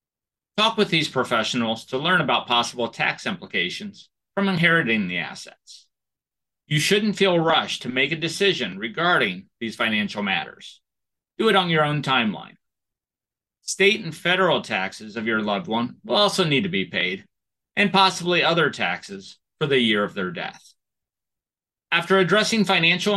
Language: English